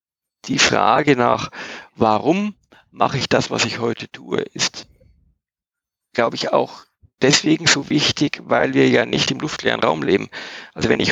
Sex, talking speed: male, 155 wpm